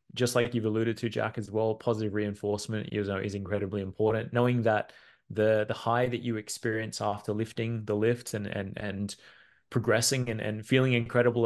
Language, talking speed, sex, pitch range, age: English, 185 wpm, male, 105-120 Hz, 20-39